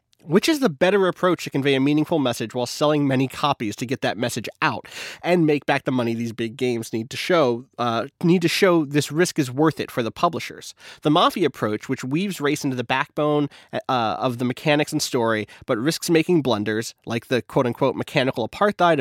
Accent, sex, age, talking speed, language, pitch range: American, male, 30-49, 210 wpm, English, 125-175 Hz